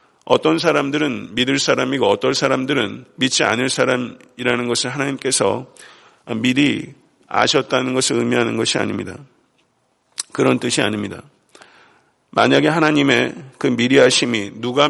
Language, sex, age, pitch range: Korean, male, 50-69, 120-150 Hz